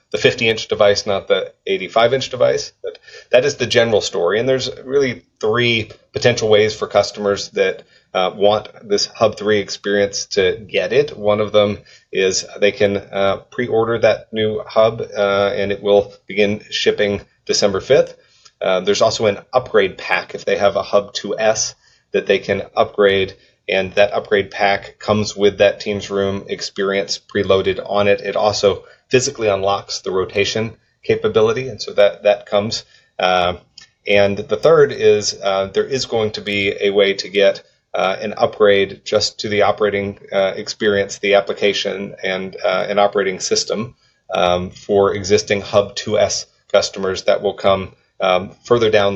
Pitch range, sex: 100-120 Hz, male